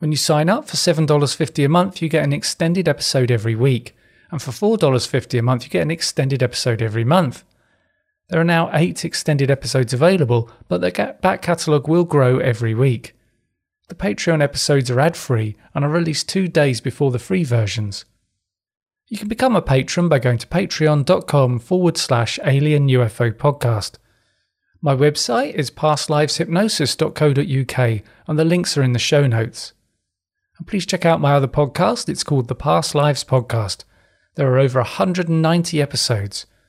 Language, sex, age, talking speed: English, male, 30-49, 160 wpm